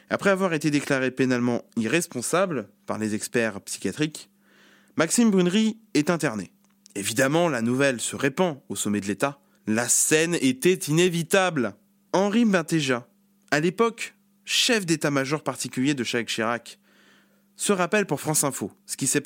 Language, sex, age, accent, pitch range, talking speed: French, male, 20-39, French, 135-200 Hz, 140 wpm